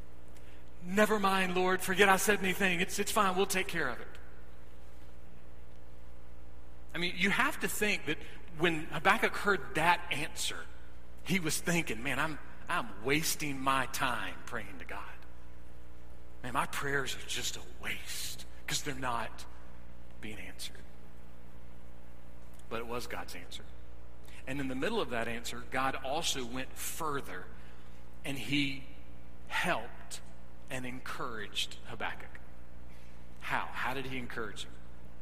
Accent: American